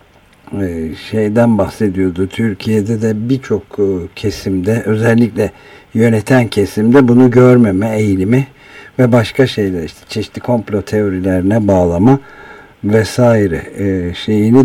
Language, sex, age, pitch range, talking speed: Turkish, male, 60-79, 95-120 Hz, 90 wpm